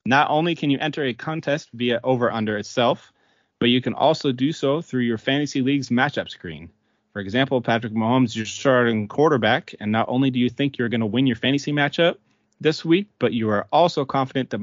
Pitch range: 110-140 Hz